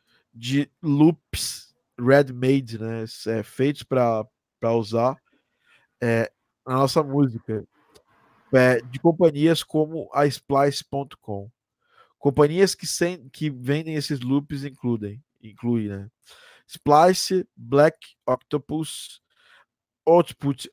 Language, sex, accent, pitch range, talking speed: Portuguese, male, Brazilian, 120-145 Hz, 100 wpm